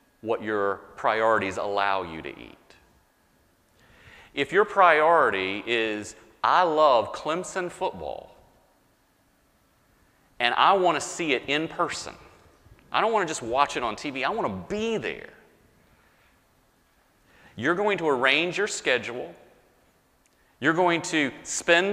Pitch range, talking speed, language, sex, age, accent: 100-165 Hz, 120 wpm, English, male, 40-59, American